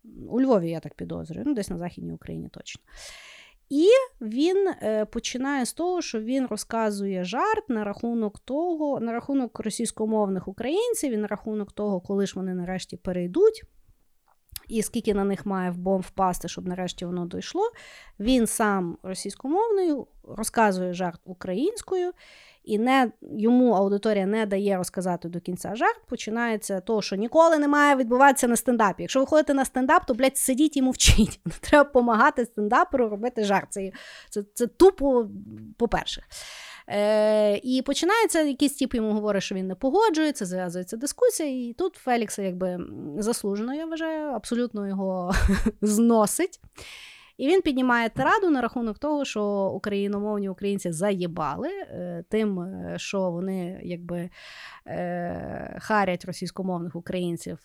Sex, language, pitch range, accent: female, Ukrainian, 190-270 Hz, native